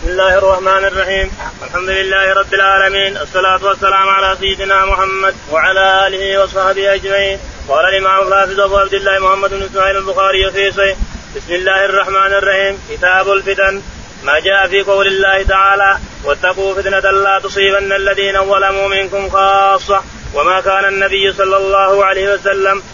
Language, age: Arabic, 30-49